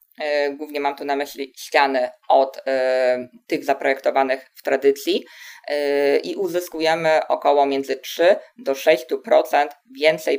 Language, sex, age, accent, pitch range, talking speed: Polish, female, 20-39, native, 135-160 Hz, 120 wpm